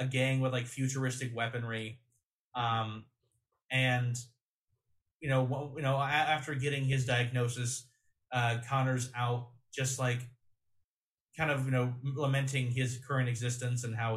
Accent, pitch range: American, 120-130 Hz